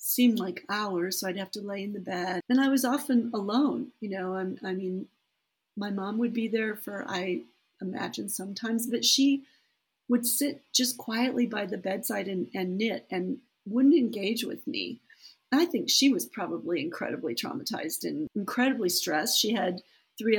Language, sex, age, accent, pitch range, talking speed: English, female, 40-59, American, 190-245 Hz, 175 wpm